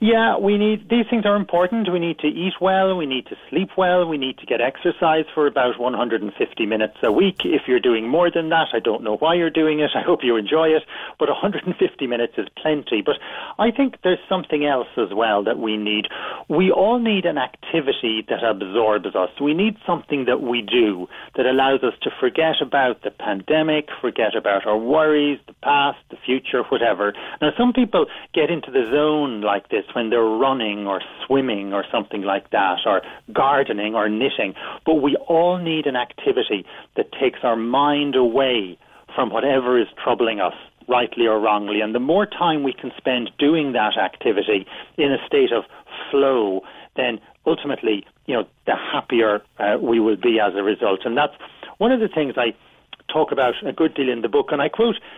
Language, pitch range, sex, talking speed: English, 120-190 Hz, male, 195 wpm